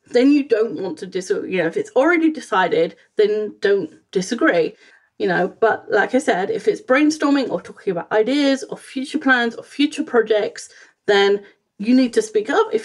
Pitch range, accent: 230-380 Hz, British